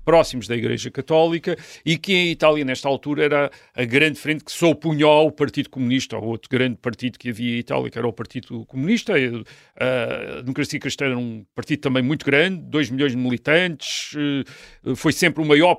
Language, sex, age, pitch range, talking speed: Portuguese, male, 40-59, 120-150 Hz, 190 wpm